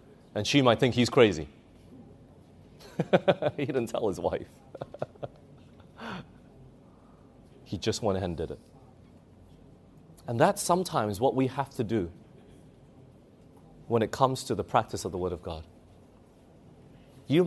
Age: 30-49